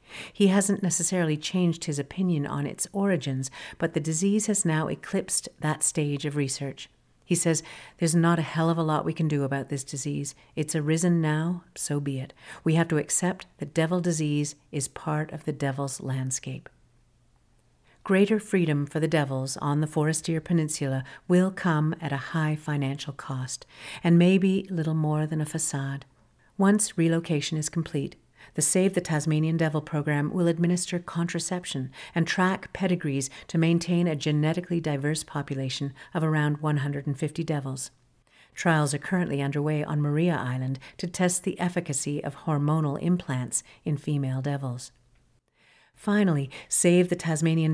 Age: 50-69